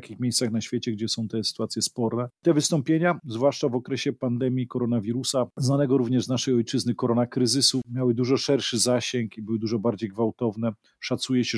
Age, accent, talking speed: 40-59, native, 180 wpm